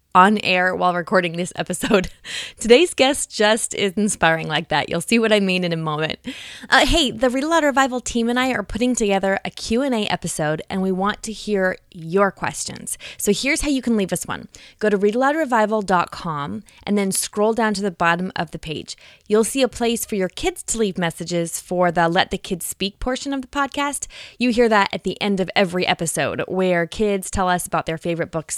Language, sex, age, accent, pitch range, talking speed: English, female, 20-39, American, 175-235 Hz, 210 wpm